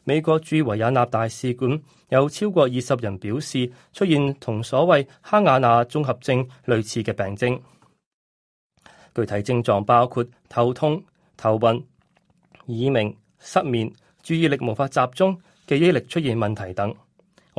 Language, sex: Chinese, male